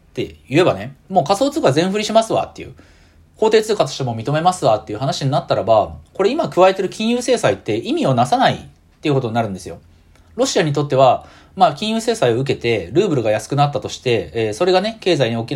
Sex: male